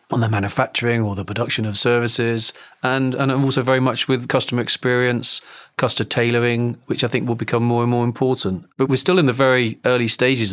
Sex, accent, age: male, British, 40-59